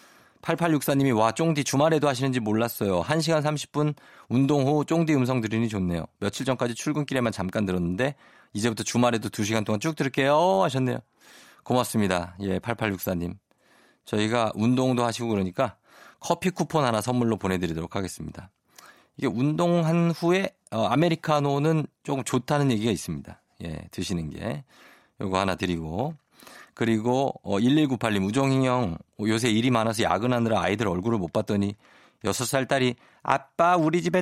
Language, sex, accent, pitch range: Korean, male, native, 100-140 Hz